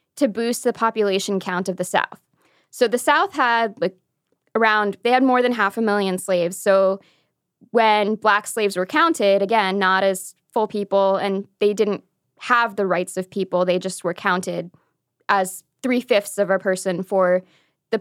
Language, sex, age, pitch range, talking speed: English, female, 20-39, 190-230 Hz, 175 wpm